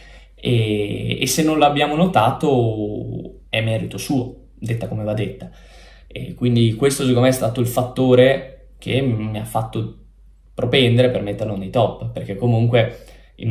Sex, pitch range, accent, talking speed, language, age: male, 110-130 Hz, native, 150 wpm, Italian, 10-29